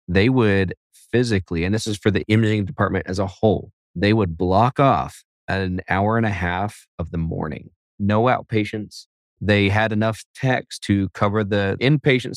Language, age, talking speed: English, 30-49, 175 wpm